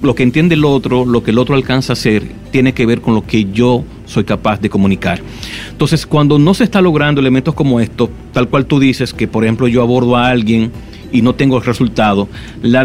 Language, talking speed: Spanish, 230 wpm